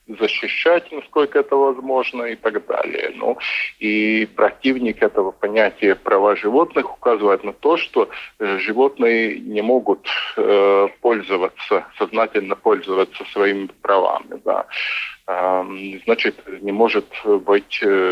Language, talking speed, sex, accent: Russian, 105 wpm, male, native